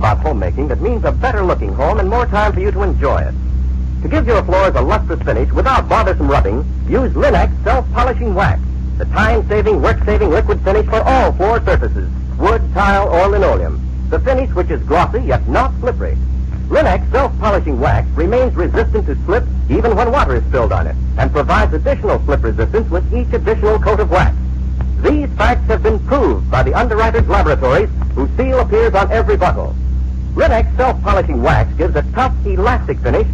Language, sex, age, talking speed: English, male, 60-79, 175 wpm